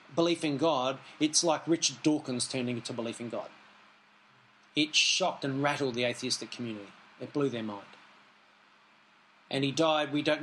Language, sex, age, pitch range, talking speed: English, male, 30-49, 125-155 Hz, 160 wpm